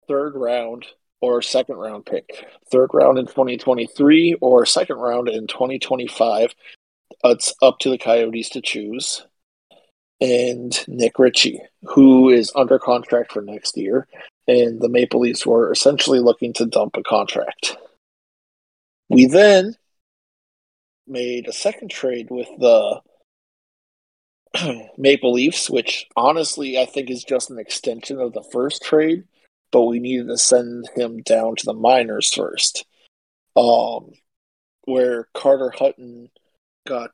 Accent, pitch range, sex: American, 115-135 Hz, male